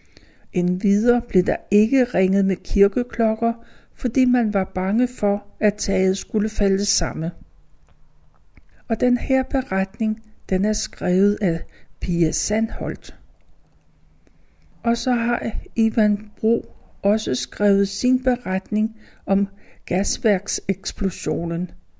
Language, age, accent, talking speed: Danish, 60-79, native, 105 wpm